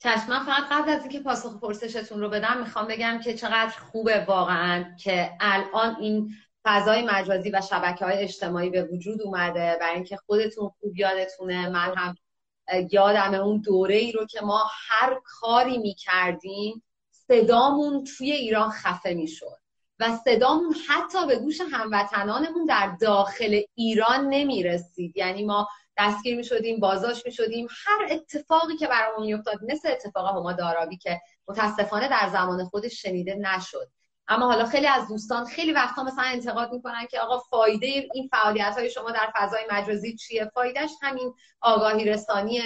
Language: English